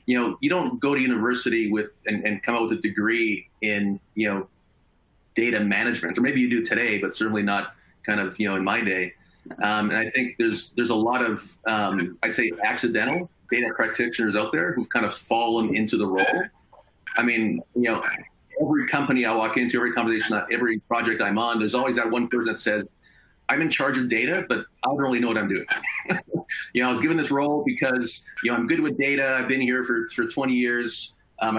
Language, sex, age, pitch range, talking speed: English, male, 30-49, 105-125 Hz, 220 wpm